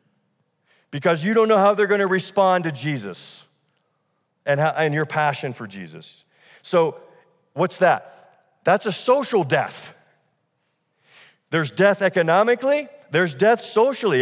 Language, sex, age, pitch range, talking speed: English, male, 50-69, 155-210 Hz, 130 wpm